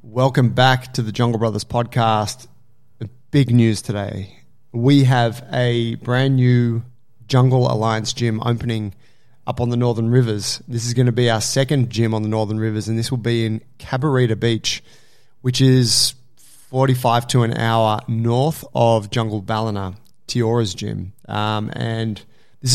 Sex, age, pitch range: male, 20-39, 110-130 Hz